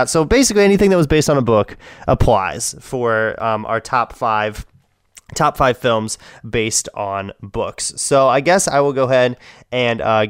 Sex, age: male, 20-39